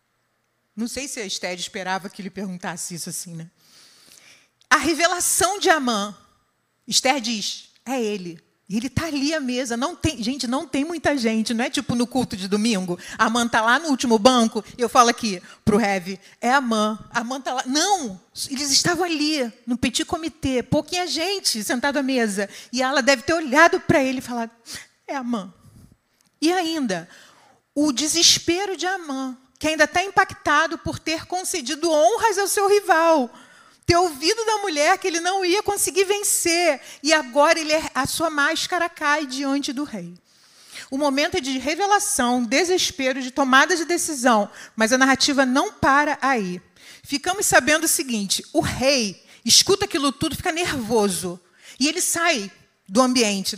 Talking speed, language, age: 165 wpm, Portuguese, 40-59